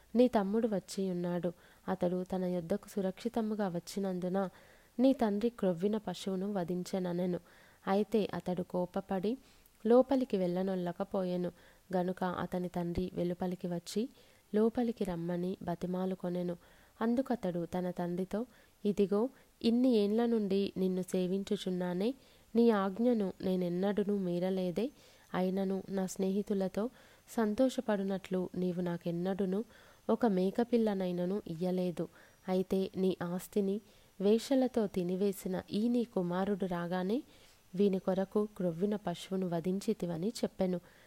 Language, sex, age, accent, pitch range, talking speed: Telugu, female, 20-39, native, 180-210 Hz, 95 wpm